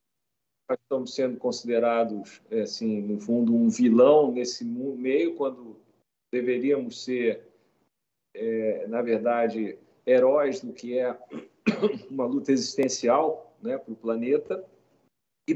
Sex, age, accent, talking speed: male, 50-69, Brazilian, 110 wpm